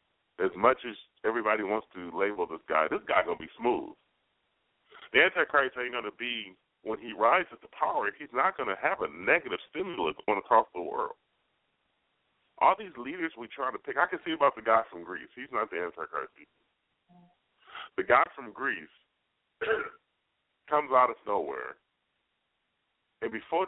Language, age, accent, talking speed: English, 40-59, American, 170 wpm